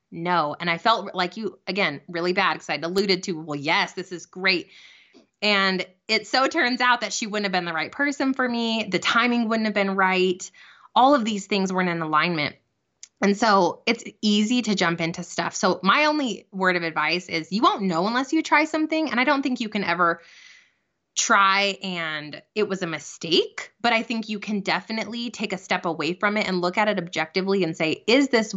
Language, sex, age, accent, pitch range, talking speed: English, female, 20-39, American, 180-235 Hz, 215 wpm